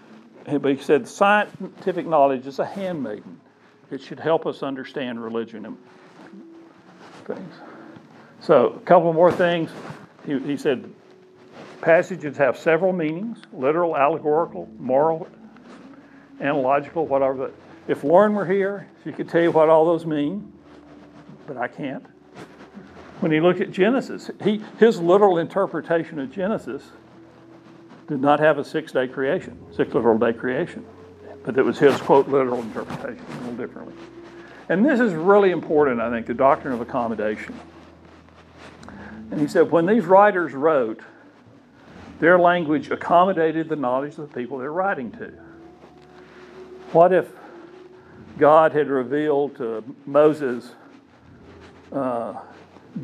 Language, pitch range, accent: English, 135-190 Hz, American